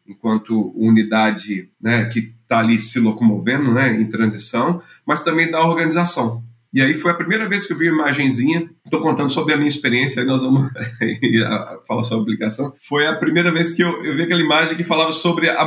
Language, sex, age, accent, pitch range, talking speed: Portuguese, male, 40-59, Brazilian, 120-165 Hz, 200 wpm